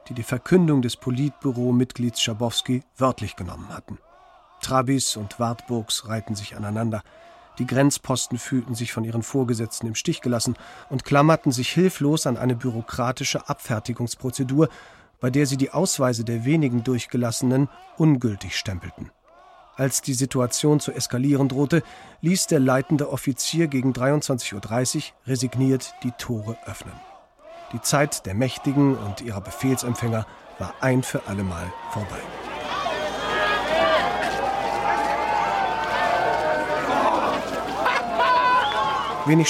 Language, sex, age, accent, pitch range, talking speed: German, male, 40-59, German, 115-145 Hz, 110 wpm